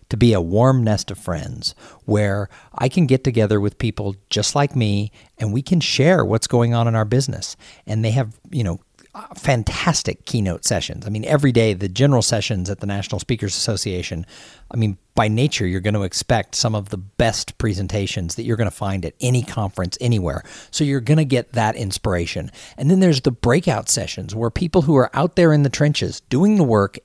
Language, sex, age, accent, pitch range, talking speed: English, male, 50-69, American, 105-140 Hz, 210 wpm